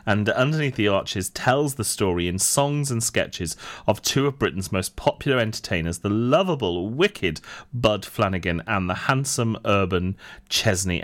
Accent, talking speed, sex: British, 150 wpm, male